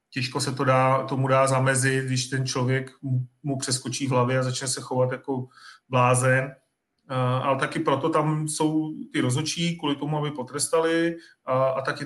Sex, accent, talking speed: male, native, 175 wpm